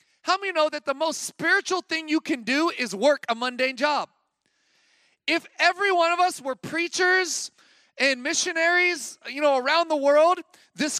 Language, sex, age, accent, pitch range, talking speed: English, male, 30-49, American, 270-330 Hz, 170 wpm